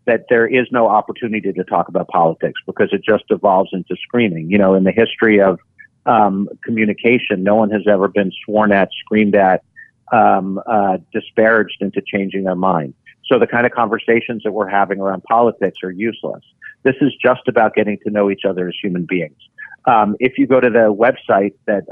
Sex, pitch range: male, 100-115 Hz